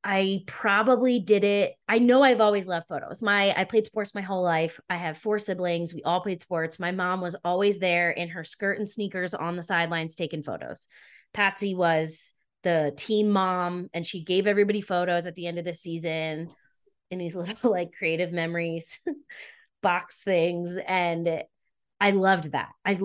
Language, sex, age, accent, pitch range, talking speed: English, female, 20-39, American, 165-195 Hz, 180 wpm